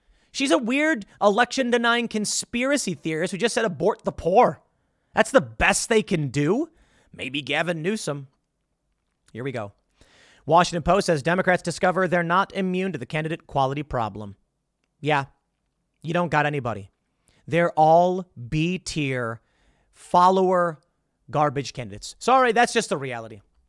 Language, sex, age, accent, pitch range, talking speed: English, male, 30-49, American, 145-210 Hz, 135 wpm